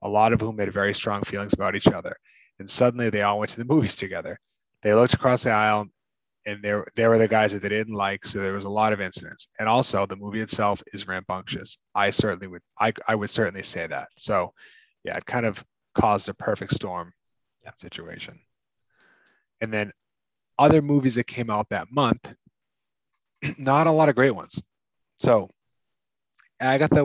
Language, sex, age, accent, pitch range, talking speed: English, male, 30-49, American, 100-120 Hz, 185 wpm